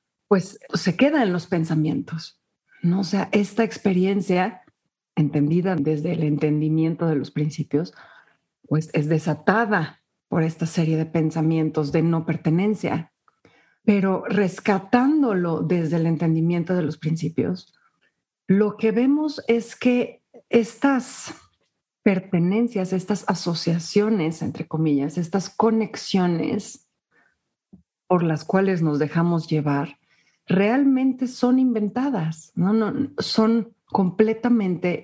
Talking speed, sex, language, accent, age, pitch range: 110 wpm, female, Spanish, Mexican, 40-59, 165-215 Hz